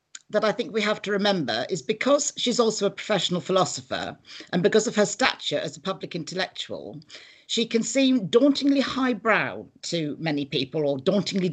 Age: 50-69